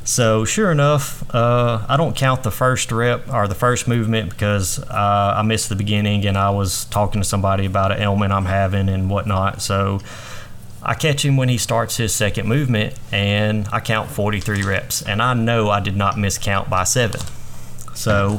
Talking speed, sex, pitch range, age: 190 wpm, male, 100-115 Hz, 30-49